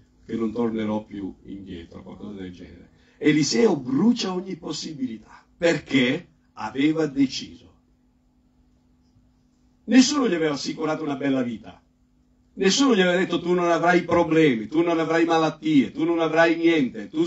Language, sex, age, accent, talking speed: Italian, male, 60-79, native, 135 wpm